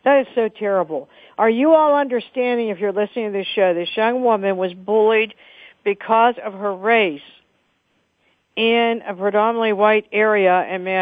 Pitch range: 185-225 Hz